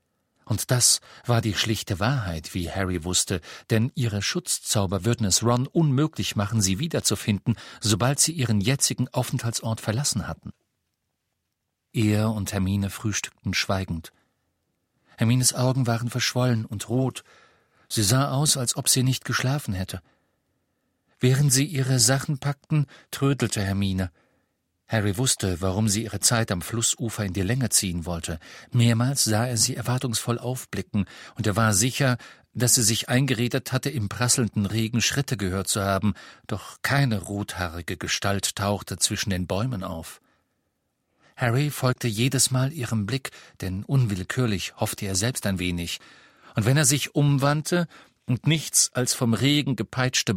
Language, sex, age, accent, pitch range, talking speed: German, male, 50-69, German, 100-130 Hz, 145 wpm